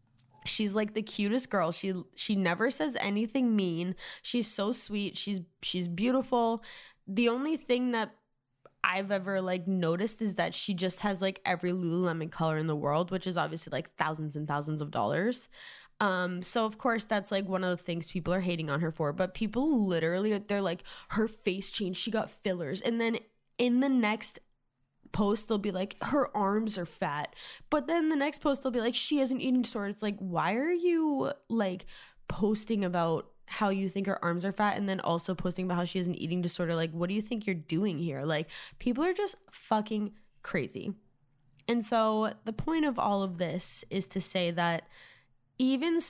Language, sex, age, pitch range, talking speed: English, female, 10-29, 175-225 Hz, 200 wpm